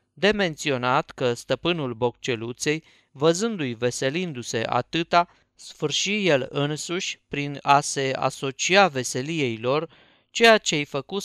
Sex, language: male, Romanian